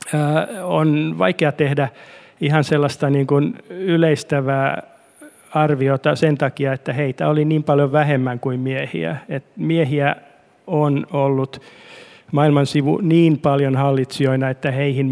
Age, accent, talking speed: 50-69, native, 115 wpm